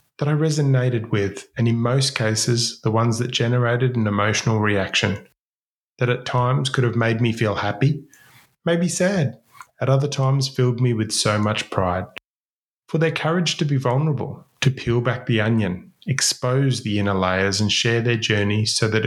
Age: 30-49